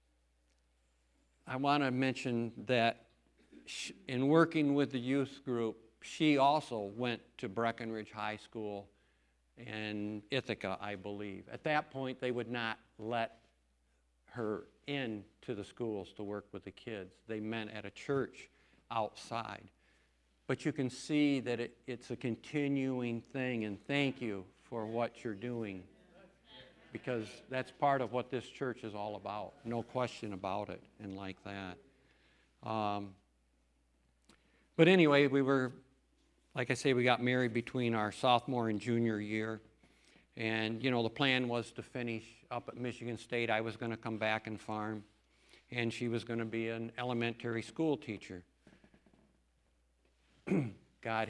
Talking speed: 150 wpm